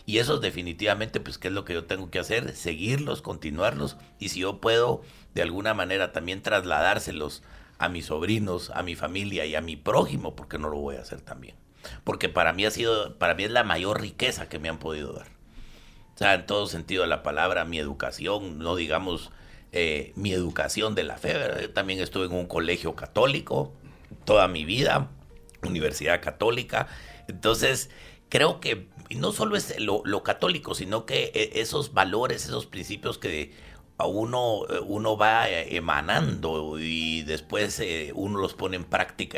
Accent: Mexican